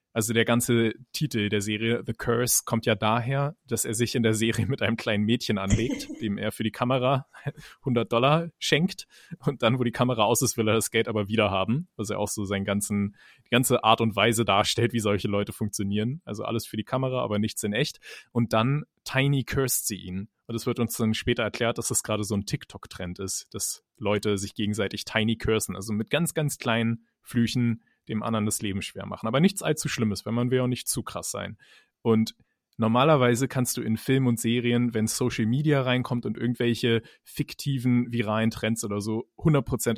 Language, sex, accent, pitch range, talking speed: German, male, German, 105-125 Hz, 205 wpm